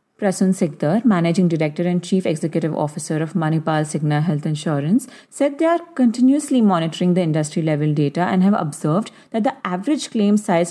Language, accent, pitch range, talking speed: English, Indian, 160-210 Hz, 160 wpm